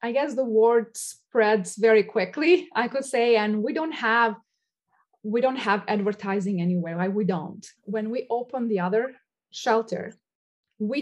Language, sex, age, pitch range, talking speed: English, female, 20-39, 200-235 Hz, 160 wpm